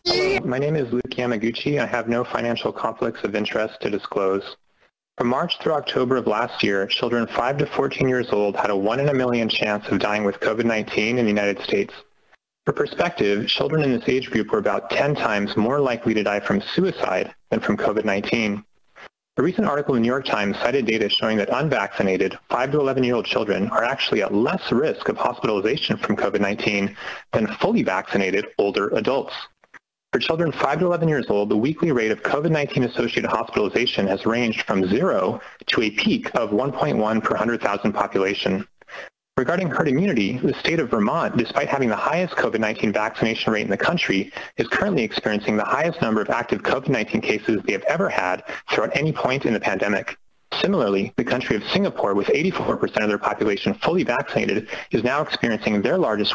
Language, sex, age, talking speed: English, male, 30-49, 185 wpm